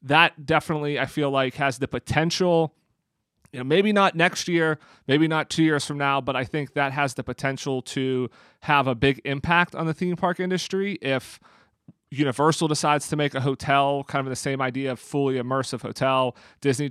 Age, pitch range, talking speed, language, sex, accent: 30-49, 130-160 Hz, 190 wpm, English, male, American